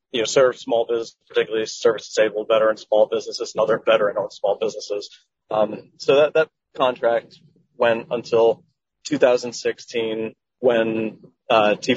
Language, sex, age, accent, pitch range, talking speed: English, male, 30-49, American, 115-180 Hz, 125 wpm